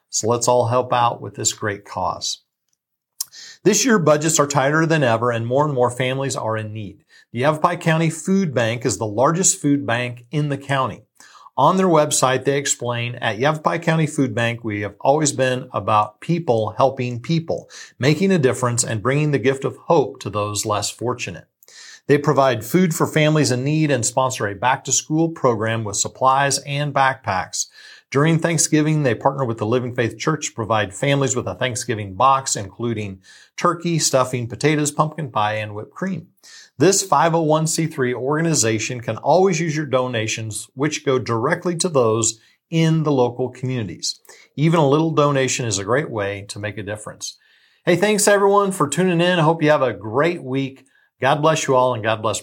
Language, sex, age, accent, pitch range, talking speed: English, male, 40-59, American, 115-155 Hz, 180 wpm